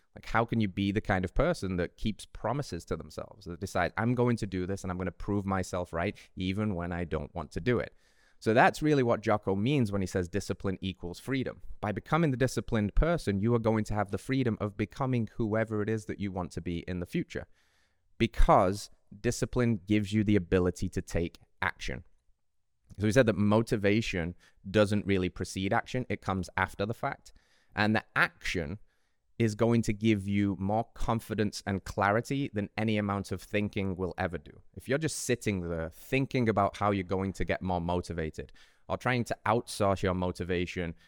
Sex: male